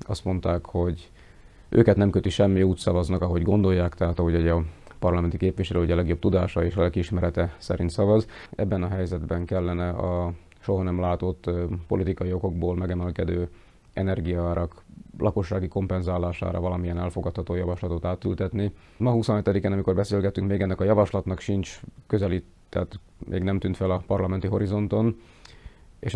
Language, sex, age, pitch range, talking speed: Hungarian, male, 30-49, 90-100 Hz, 140 wpm